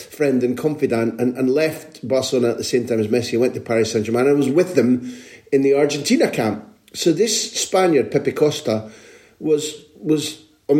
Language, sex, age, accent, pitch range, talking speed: English, male, 40-59, British, 115-160 Hz, 190 wpm